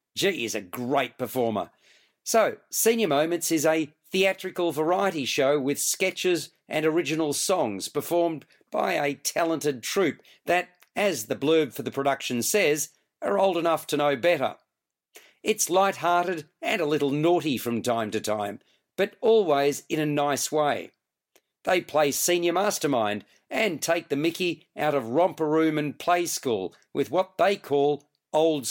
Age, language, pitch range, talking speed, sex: 50-69, English, 145-175 Hz, 155 wpm, male